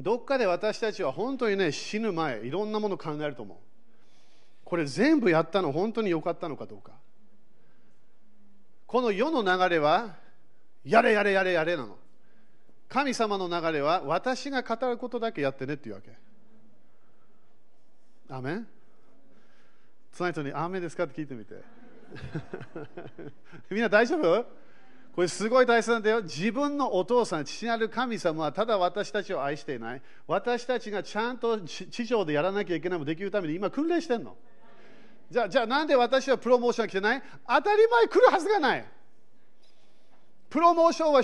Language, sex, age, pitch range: Japanese, male, 40-59, 175-250 Hz